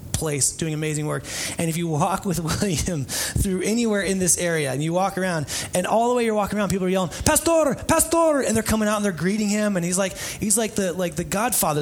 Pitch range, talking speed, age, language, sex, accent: 130-185 Hz, 245 wpm, 30-49, English, male, American